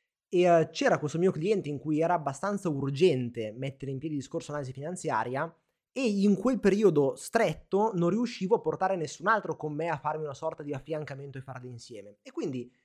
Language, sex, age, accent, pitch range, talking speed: Italian, male, 20-39, native, 140-200 Hz, 185 wpm